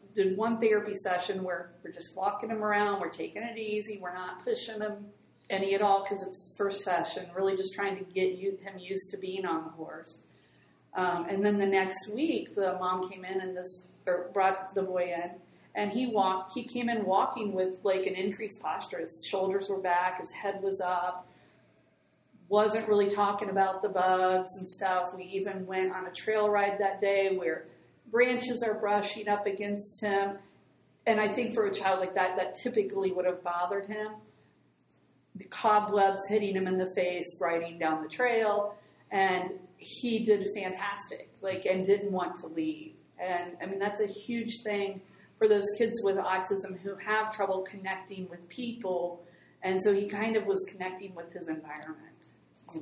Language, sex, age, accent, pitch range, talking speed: English, female, 40-59, American, 185-205 Hz, 185 wpm